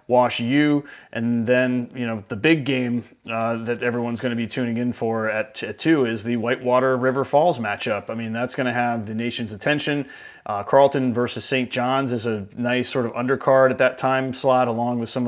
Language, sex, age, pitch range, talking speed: English, male, 30-49, 120-135 Hz, 210 wpm